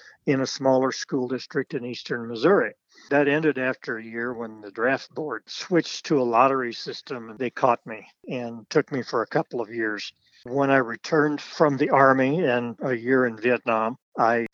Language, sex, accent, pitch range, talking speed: English, male, American, 120-145 Hz, 190 wpm